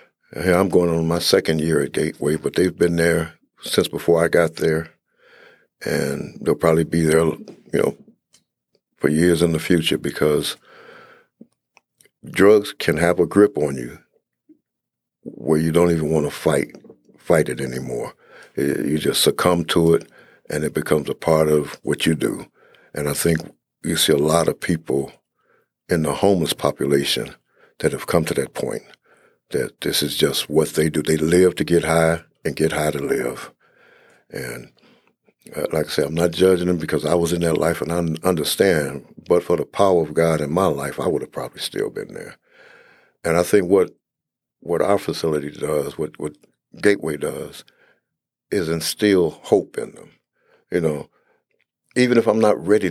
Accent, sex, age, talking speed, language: American, male, 60-79, 175 wpm, English